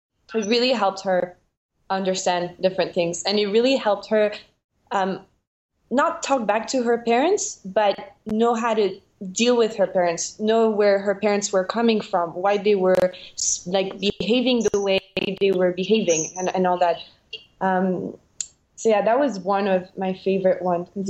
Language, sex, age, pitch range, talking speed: English, female, 20-39, 185-225 Hz, 165 wpm